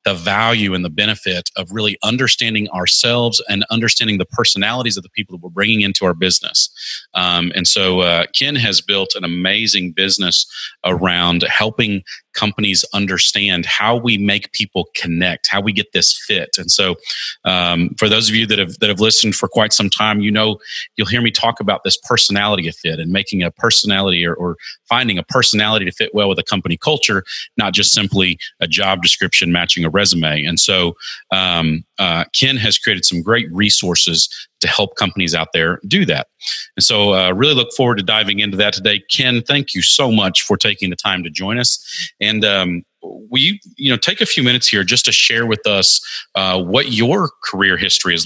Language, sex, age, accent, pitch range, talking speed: English, male, 30-49, American, 90-115 Hz, 200 wpm